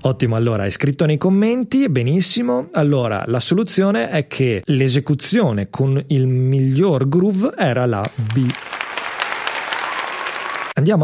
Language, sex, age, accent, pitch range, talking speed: Italian, male, 30-49, native, 120-175 Hz, 115 wpm